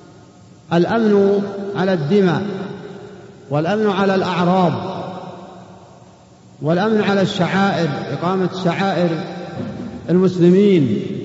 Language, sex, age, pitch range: Arabic, male, 50-69, 170-195 Hz